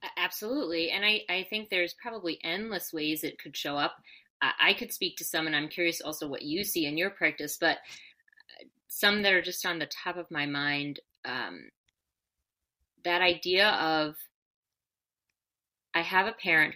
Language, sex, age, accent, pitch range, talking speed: English, female, 30-49, American, 155-200 Hz, 170 wpm